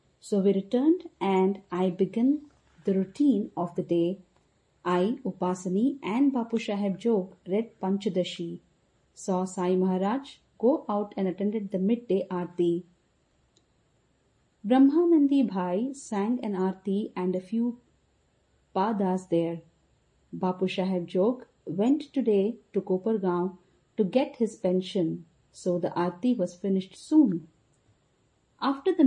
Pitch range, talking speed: 180-230 Hz, 120 wpm